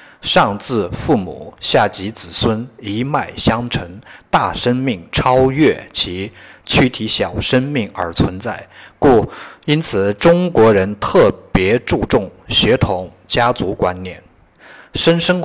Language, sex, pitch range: Chinese, male, 95-130 Hz